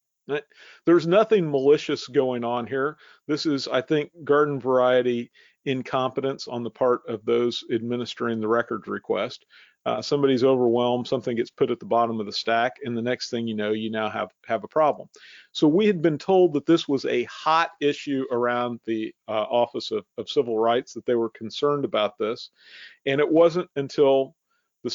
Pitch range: 120-145 Hz